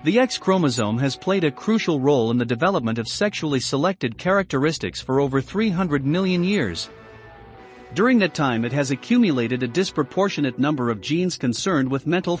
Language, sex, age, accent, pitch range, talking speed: English, male, 50-69, American, 125-175 Hz, 165 wpm